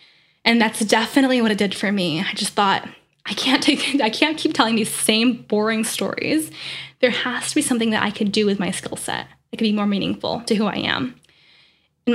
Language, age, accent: English, 10-29, American